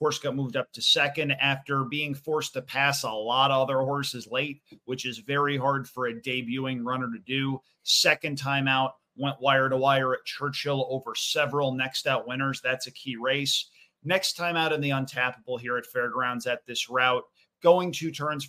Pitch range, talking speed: 130-150 Hz, 195 wpm